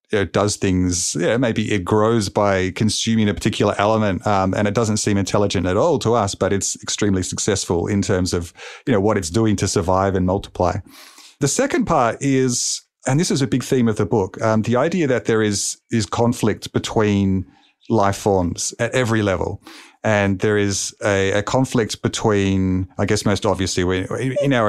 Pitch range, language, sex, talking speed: 95-110 Hz, English, male, 190 wpm